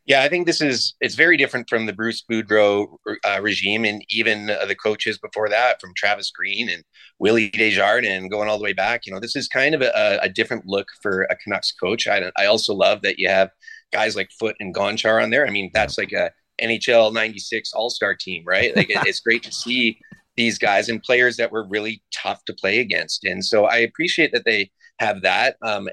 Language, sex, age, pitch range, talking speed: English, male, 30-49, 105-120 Hz, 220 wpm